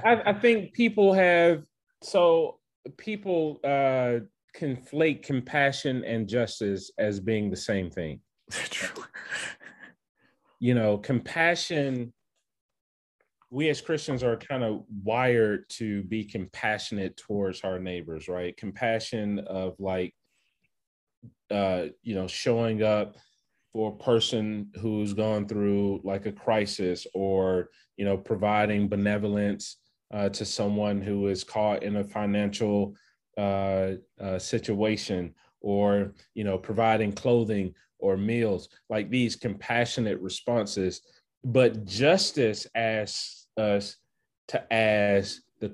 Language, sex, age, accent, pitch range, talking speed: English, male, 30-49, American, 100-120 Hz, 115 wpm